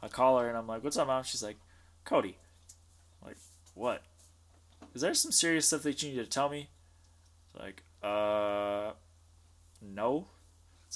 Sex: male